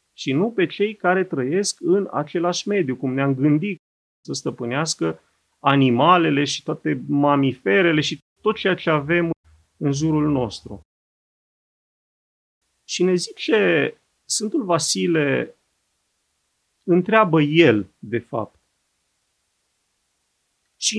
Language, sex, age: Romanian, male, 30-49